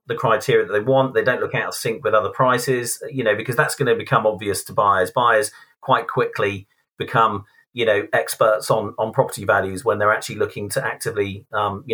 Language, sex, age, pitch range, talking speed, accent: English, male, 40-59, 105-160 Hz, 210 wpm, British